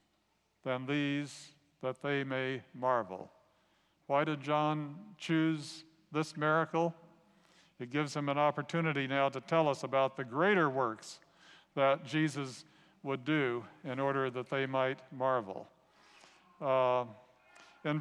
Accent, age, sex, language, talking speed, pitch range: American, 50-69, male, English, 125 wpm, 135-165 Hz